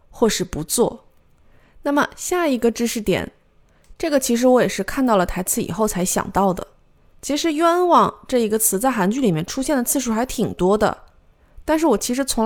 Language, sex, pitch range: Chinese, female, 190-270 Hz